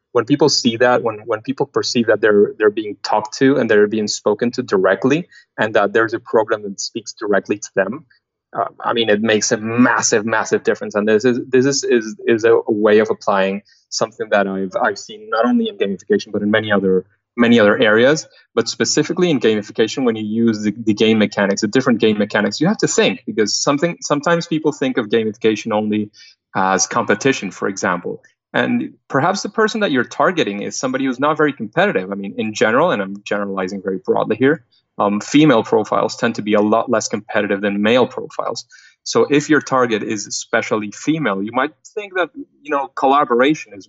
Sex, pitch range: male, 105-135 Hz